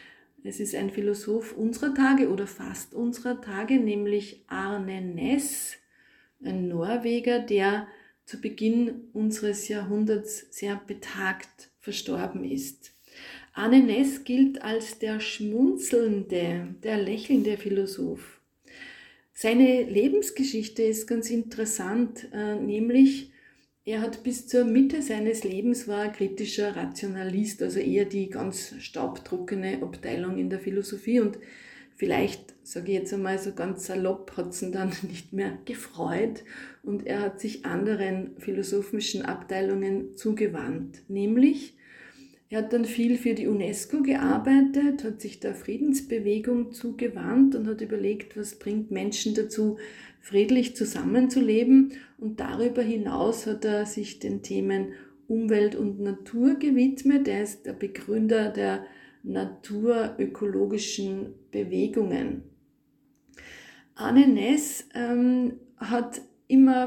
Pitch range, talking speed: 200-250 Hz, 115 wpm